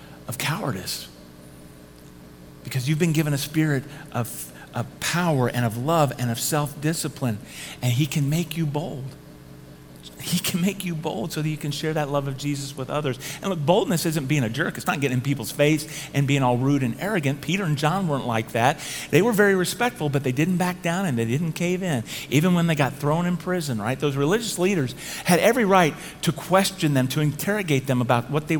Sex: male